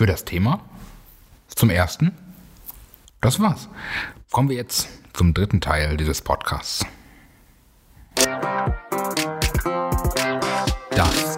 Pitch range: 85-105 Hz